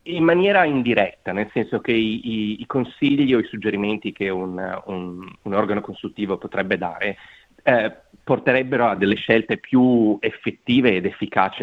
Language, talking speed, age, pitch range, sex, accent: Italian, 150 wpm, 30-49, 95-120 Hz, male, native